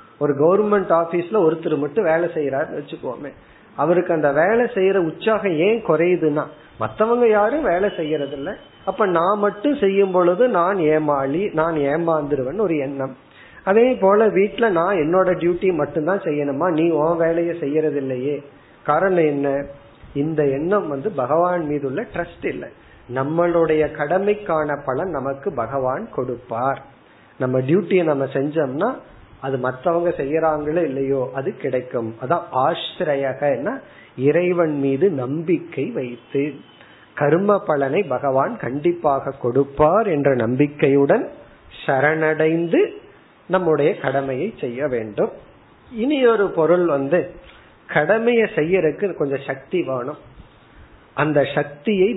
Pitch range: 140-185 Hz